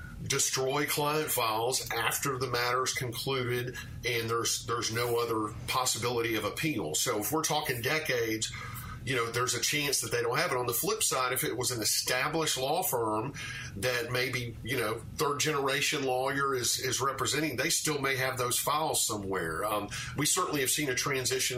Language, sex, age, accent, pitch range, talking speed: English, male, 40-59, American, 115-135 Hz, 185 wpm